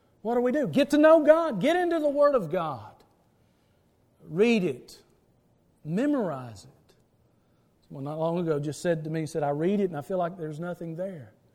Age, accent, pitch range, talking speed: 40-59, American, 165-240 Hz, 190 wpm